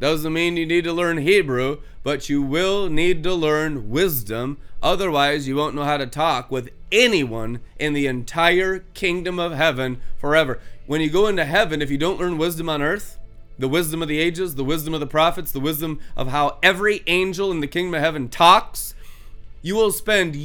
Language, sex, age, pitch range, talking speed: English, male, 30-49, 155-255 Hz, 195 wpm